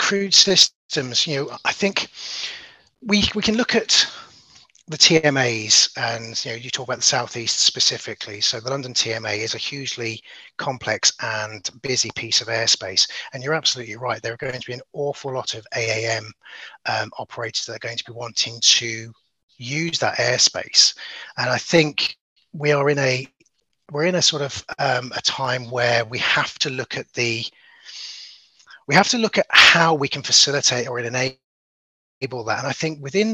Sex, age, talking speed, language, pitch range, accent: male, 30-49, 180 wpm, English, 120-155 Hz, British